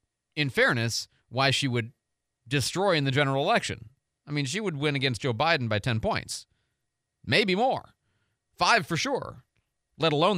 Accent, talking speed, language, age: American, 160 wpm, English, 40-59